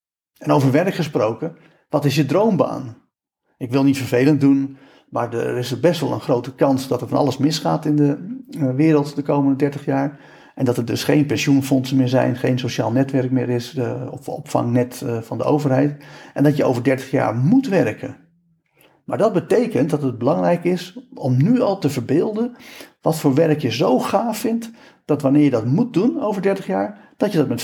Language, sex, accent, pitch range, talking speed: Dutch, male, Dutch, 135-160 Hz, 200 wpm